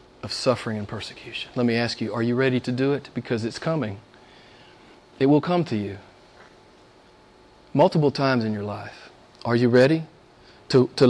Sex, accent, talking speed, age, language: male, American, 175 wpm, 40-59, English